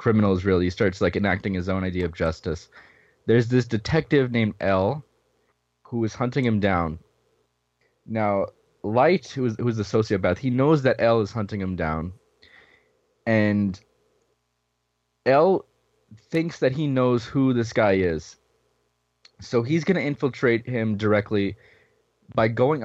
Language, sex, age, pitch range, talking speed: English, male, 20-39, 100-130 Hz, 145 wpm